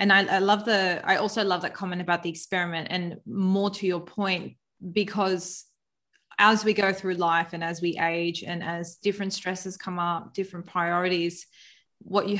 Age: 20-39